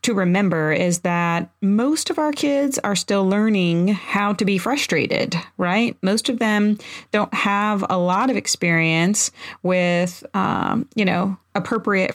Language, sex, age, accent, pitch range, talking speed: English, female, 40-59, American, 175-225 Hz, 145 wpm